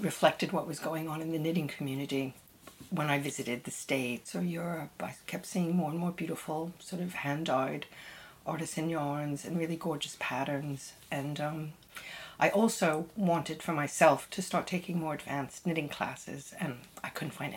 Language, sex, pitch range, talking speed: English, female, 155-185 Hz, 170 wpm